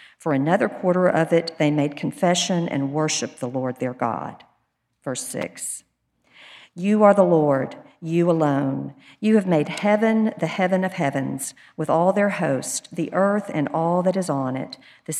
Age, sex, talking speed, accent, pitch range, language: 50-69, female, 170 wpm, American, 145-185 Hz, English